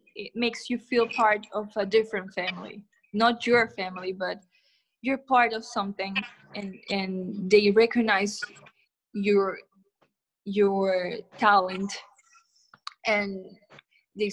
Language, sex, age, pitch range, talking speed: English, female, 20-39, 200-250 Hz, 110 wpm